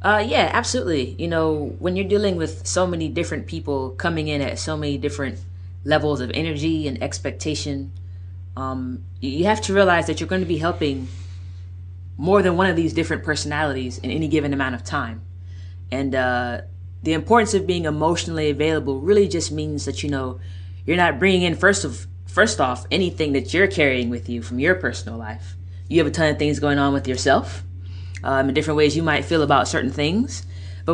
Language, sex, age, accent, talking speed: English, female, 20-39, American, 195 wpm